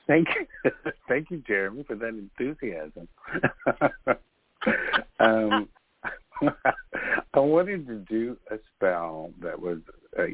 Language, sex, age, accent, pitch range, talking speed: English, male, 60-79, American, 95-120 Hz, 105 wpm